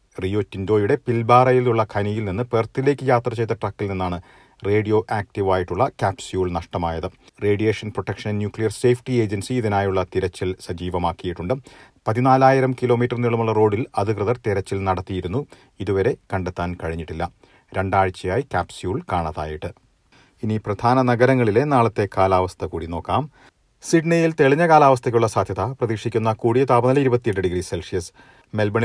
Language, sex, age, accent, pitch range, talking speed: Malayalam, male, 40-59, native, 95-125 Hz, 100 wpm